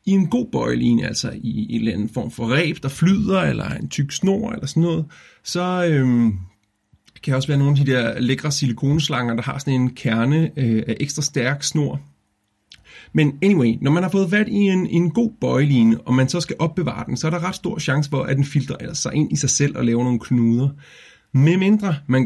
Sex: male